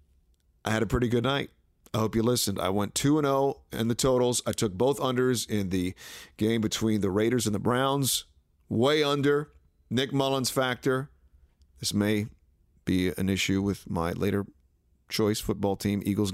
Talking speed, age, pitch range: 170 wpm, 40-59, 85-125 Hz